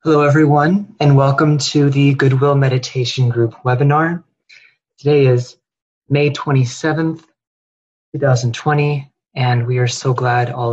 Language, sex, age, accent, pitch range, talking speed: English, male, 30-49, American, 125-155 Hz, 115 wpm